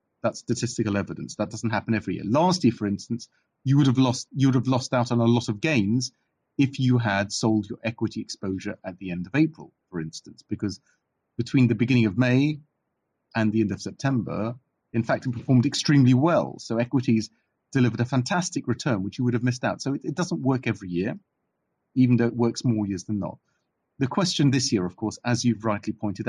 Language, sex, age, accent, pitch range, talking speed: English, male, 30-49, British, 105-130 Hz, 215 wpm